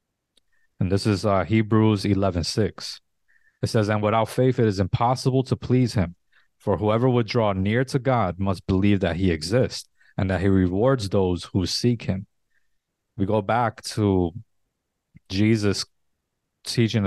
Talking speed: 150 wpm